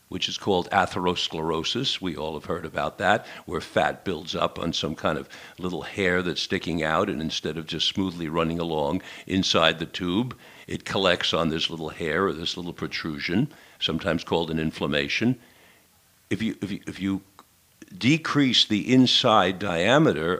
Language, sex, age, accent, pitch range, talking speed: English, male, 60-79, American, 90-120 Hz, 170 wpm